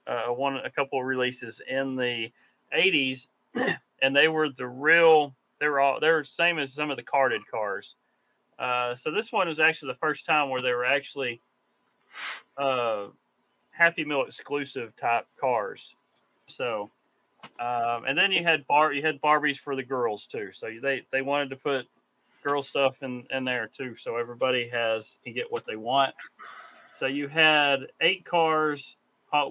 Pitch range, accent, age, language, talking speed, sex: 125-150 Hz, American, 40-59, English, 175 wpm, male